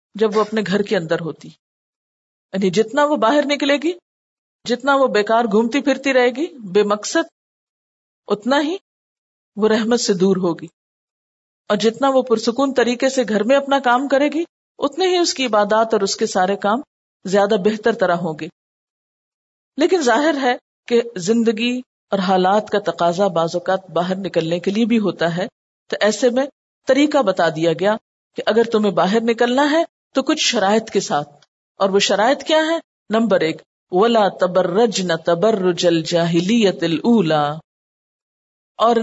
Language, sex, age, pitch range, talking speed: Urdu, female, 50-69, 180-250 Hz, 160 wpm